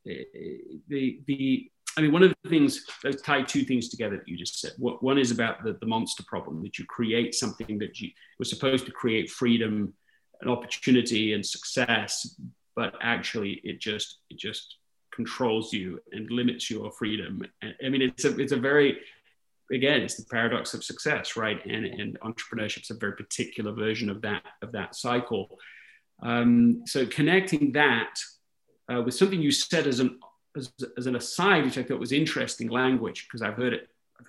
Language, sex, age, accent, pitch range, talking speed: English, male, 30-49, British, 120-160 Hz, 180 wpm